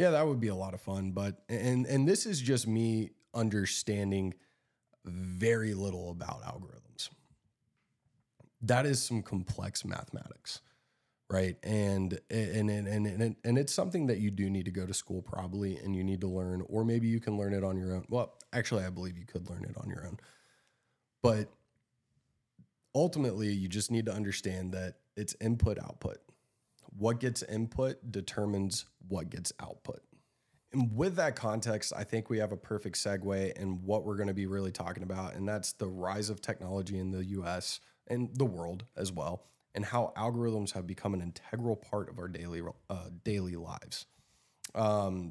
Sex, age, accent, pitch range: male, 20-39, American, 95-115 Hz